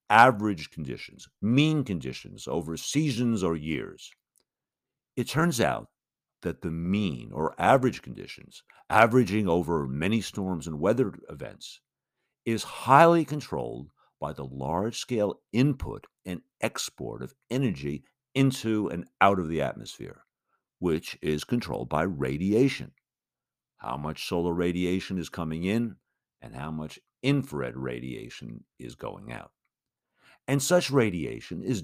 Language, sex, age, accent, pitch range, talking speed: English, male, 60-79, American, 85-120 Hz, 125 wpm